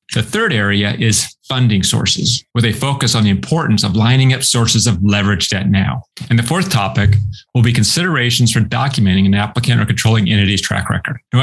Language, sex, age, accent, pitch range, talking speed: English, male, 30-49, American, 105-130 Hz, 195 wpm